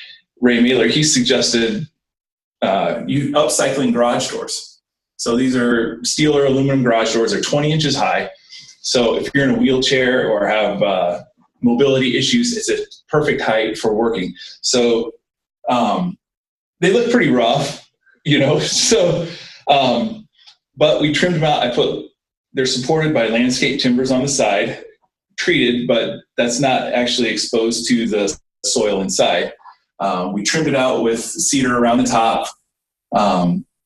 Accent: American